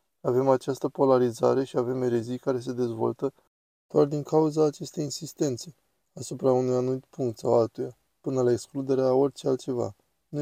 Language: Romanian